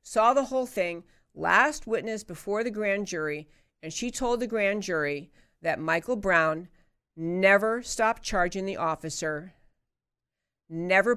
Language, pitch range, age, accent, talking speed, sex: English, 185-280 Hz, 50-69, American, 135 wpm, female